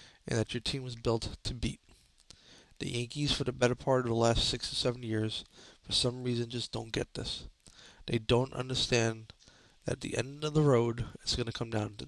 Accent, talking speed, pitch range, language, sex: American, 215 wpm, 115-130 Hz, English, male